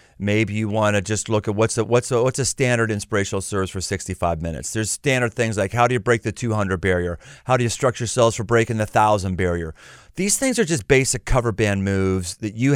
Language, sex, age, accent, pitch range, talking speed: English, male, 40-59, American, 95-130 Hz, 220 wpm